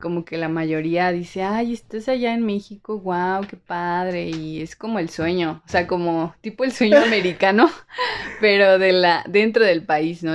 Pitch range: 160-200 Hz